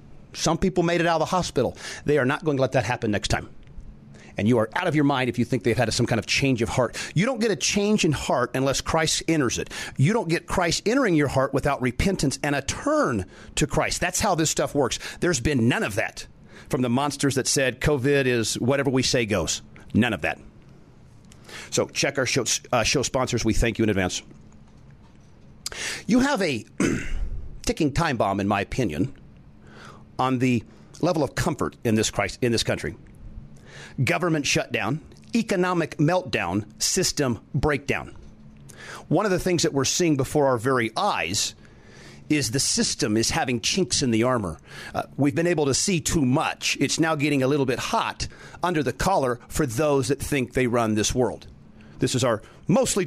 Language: English